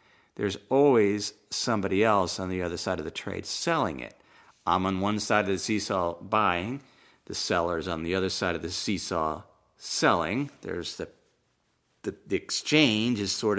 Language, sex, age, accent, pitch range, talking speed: English, male, 50-69, American, 100-145 Hz, 170 wpm